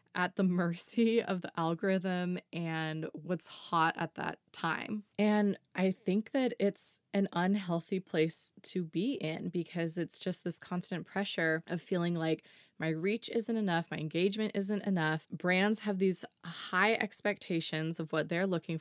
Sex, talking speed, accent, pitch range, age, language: female, 155 wpm, American, 160-200 Hz, 20-39, English